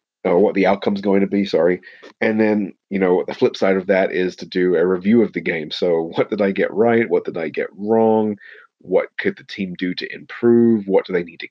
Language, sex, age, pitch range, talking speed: English, male, 30-49, 90-105 Hz, 250 wpm